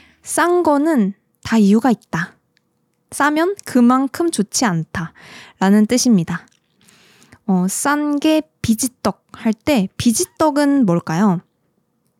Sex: female